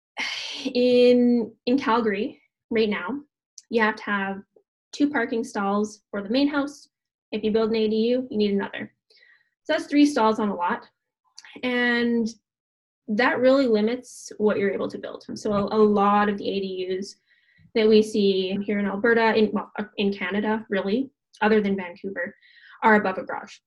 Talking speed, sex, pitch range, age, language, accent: 160 wpm, female, 205-240 Hz, 20-39, English, American